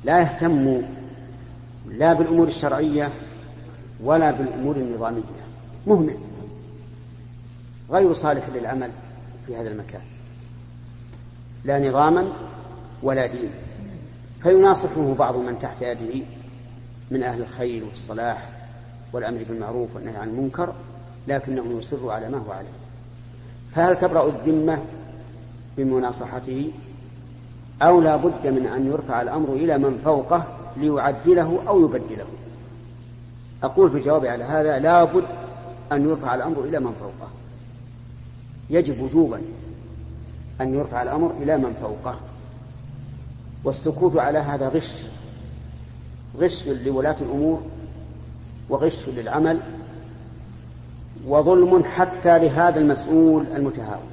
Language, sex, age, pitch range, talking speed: Arabic, male, 50-69, 120-145 Hz, 100 wpm